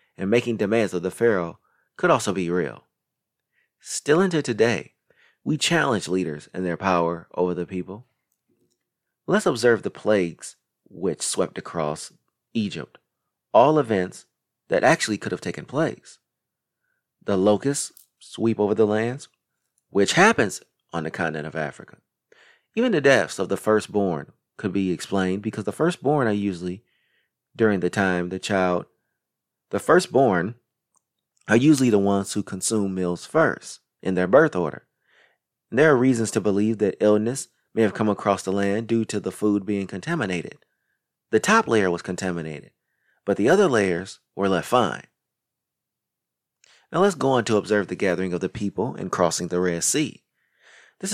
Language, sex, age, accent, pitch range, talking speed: English, male, 30-49, American, 90-110 Hz, 155 wpm